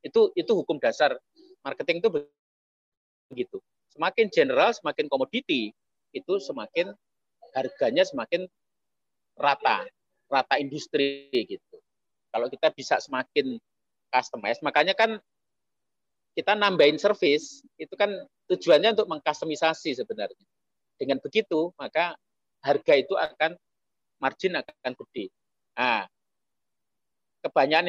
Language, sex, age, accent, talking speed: Indonesian, male, 40-59, native, 100 wpm